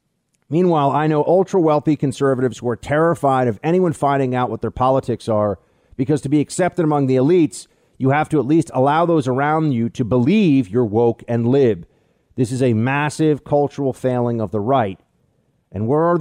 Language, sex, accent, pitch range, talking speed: English, male, American, 120-165 Hz, 185 wpm